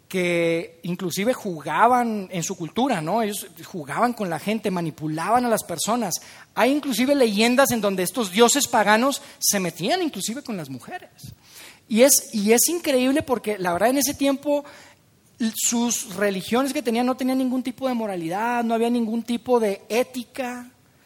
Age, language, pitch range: 30-49, Spanish, 185-255 Hz